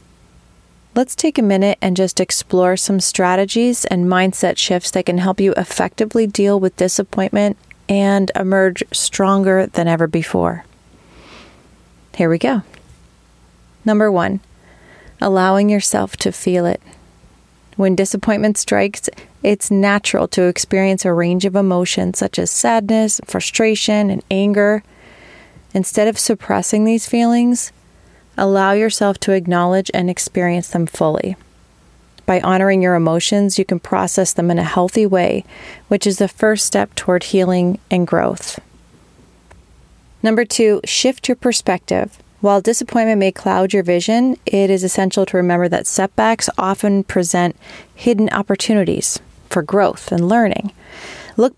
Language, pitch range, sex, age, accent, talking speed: English, 180-210 Hz, female, 30-49, American, 135 wpm